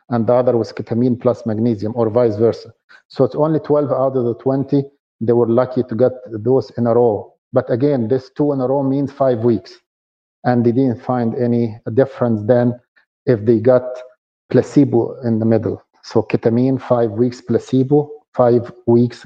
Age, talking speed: 50-69, 180 wpm